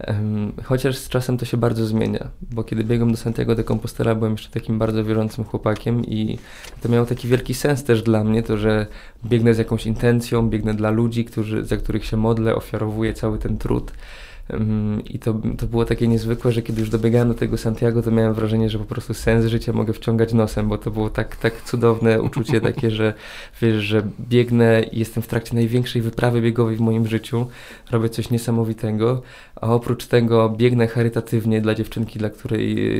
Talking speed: 190 wpm